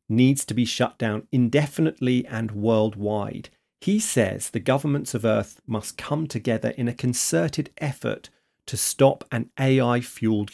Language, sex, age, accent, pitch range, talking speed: English, male, 40-59, British, 110-135 Hz, 150 wpm